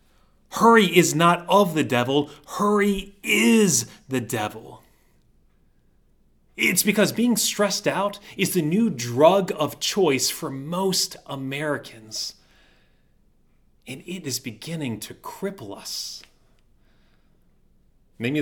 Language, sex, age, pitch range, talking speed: English, male, 30-49, 130-185 Hz, 105 wpm